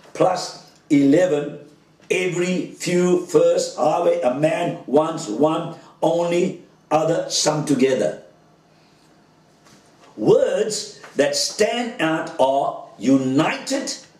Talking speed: 85 wpm